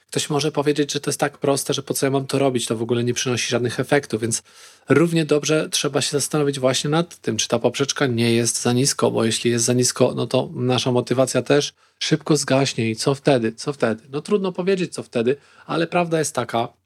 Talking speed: 230 wpm